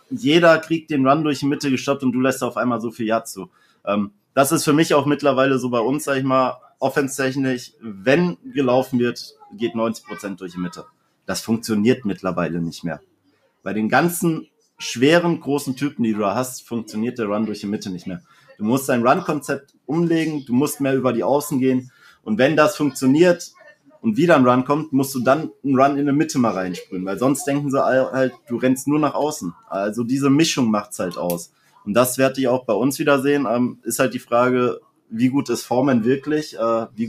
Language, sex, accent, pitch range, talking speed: German, male, German, 115-145 Hz, 205 wpm